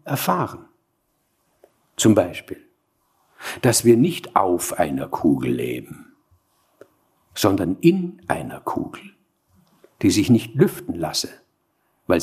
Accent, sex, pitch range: German, male, 125-175 Hz